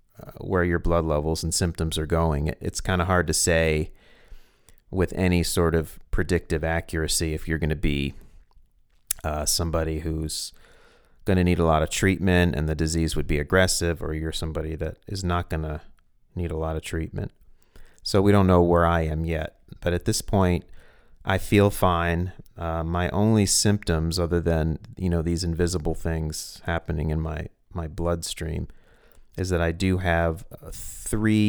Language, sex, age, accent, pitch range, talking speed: English, male, 30-49, American, 80-90 Hz, 175 wpm